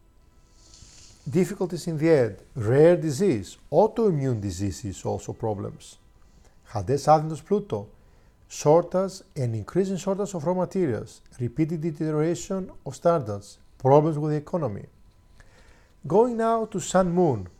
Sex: male